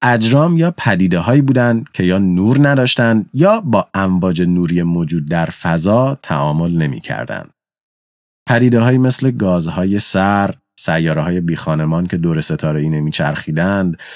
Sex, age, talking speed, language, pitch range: male, 30-49, 120 wpm, Persian, 80-125 Hz